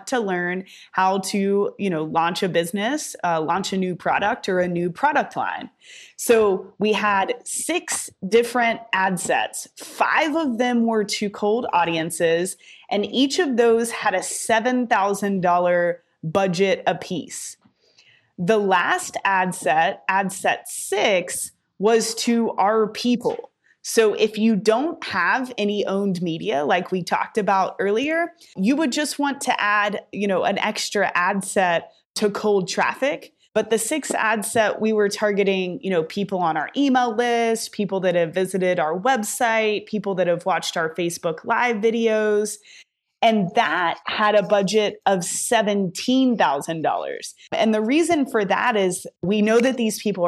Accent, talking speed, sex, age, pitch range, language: American, 155 wpm, female, 20-39, 185-235 Hz, English